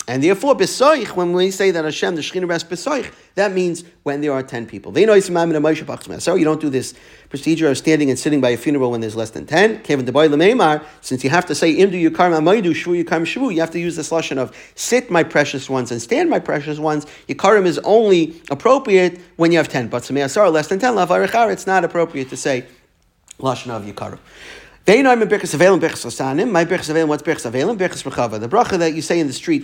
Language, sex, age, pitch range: English, male, 50-69, 130-170 Hz